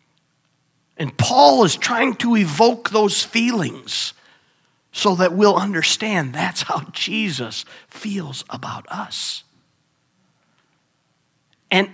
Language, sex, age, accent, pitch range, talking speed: English, male, 50-69, American, 140-185 Hz, 95 wpm